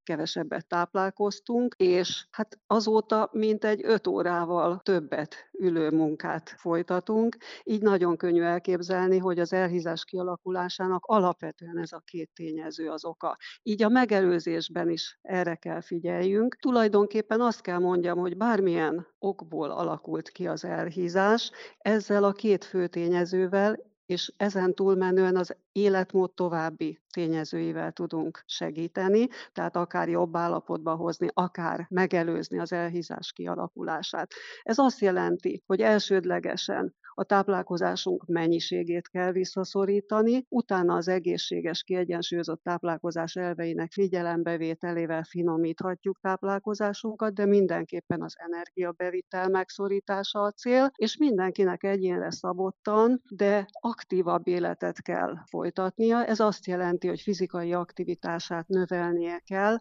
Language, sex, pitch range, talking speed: Hungarian, female, 175-200 Hz, 110 wpm